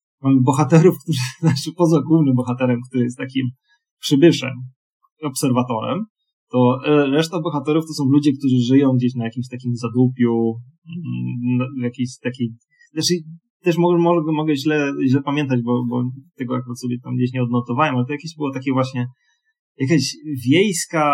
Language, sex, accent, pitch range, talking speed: Polish, male, native, 125-150 Hz, 150 wpm